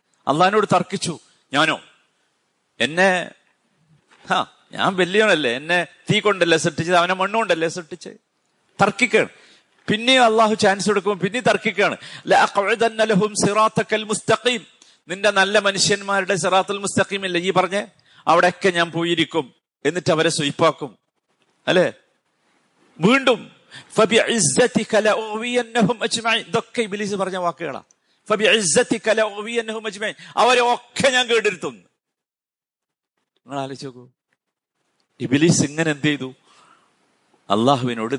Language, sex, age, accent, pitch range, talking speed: Malayalam, male, 50-69, native, 155-210 Hz, 65 wpm